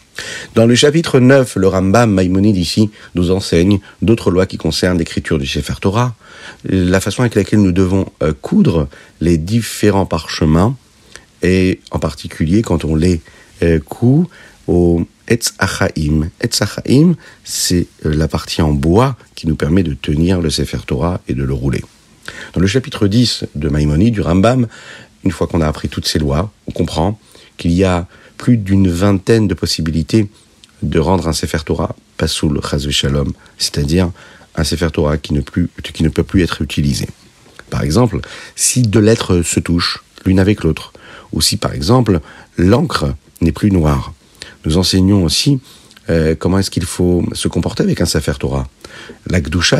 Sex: male